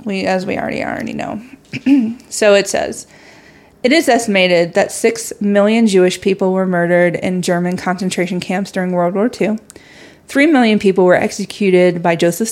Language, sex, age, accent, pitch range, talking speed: English, female, 30-49, American, 180-215 Hz, 170 wpm